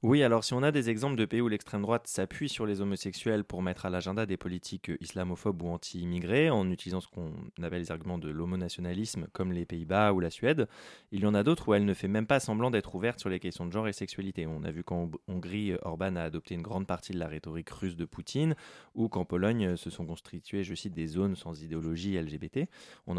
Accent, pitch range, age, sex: French, 90-115 Hz, 20-39, male